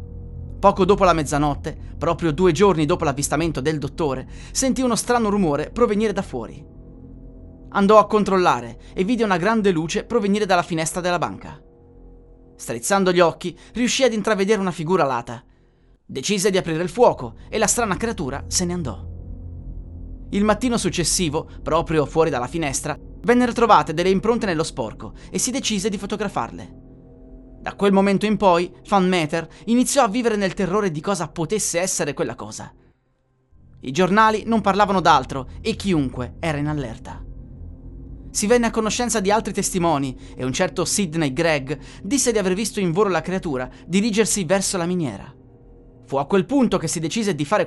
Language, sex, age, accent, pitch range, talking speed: Italian, male, 30-49, native, 145-210 Hz, 165 wpm